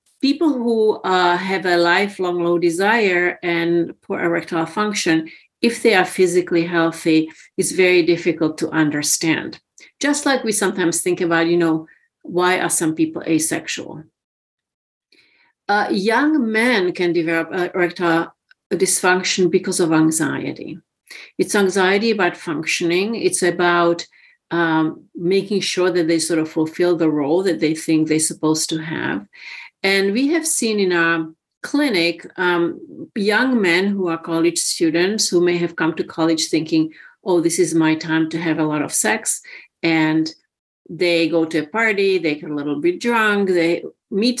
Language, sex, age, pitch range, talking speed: English, female, 50-69, 160-190 Hz, 155 wpm